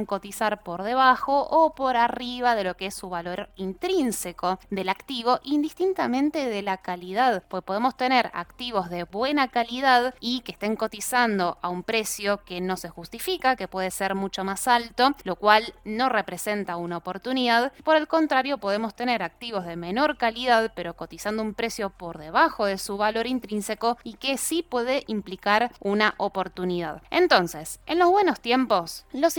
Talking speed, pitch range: 165 wpm, 195-255 Hz